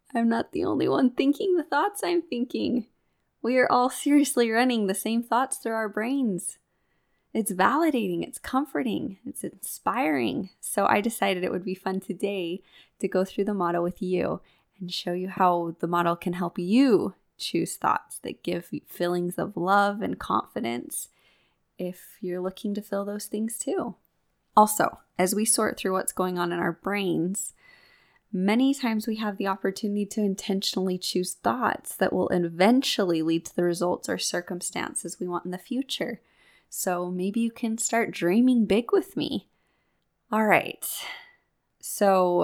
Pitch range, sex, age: 180-230 Hz, female, 10-29